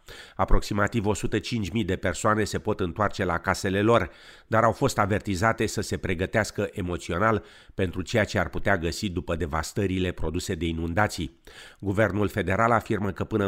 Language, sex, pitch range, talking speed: Romanian, male, 90-110 Hz, 150 wpm